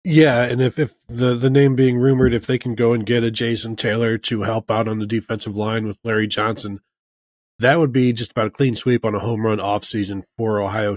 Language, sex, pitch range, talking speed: English, male, 110-125 Hz, 235 wpm